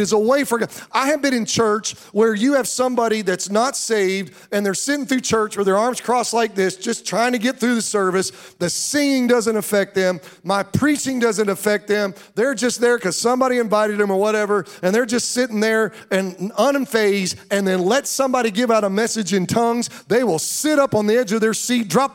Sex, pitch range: male, 195-240 Hz